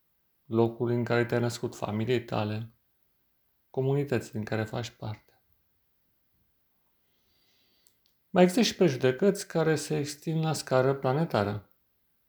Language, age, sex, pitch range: Romanian, 30-49, male, 110-135 Hz